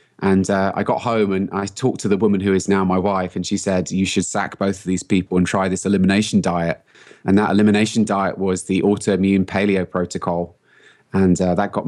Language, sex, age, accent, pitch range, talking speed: English, male, 20-39, British, 95-105 Hz, 220 wpm